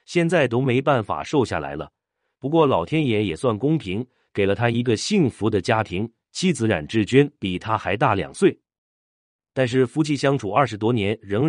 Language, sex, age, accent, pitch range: Chinese, male, 30-49, native, 100-140 Hz